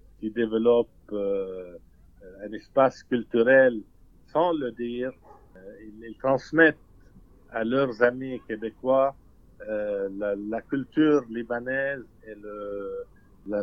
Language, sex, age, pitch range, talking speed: French, male, 50-69, 110-135 Hz, 90 wpm